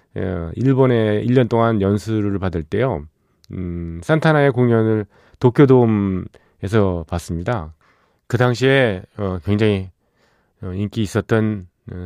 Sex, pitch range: male, 90-125 Hz